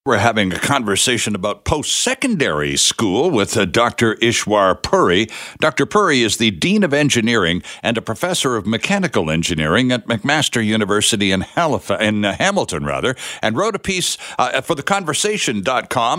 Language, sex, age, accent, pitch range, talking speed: English, male, 60-79, American, 115-160 Hz, 145 wpm